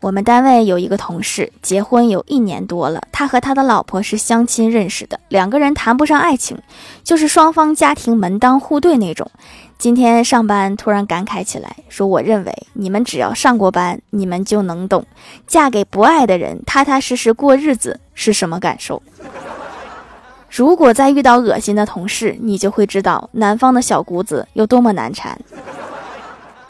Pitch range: 195-255 Hz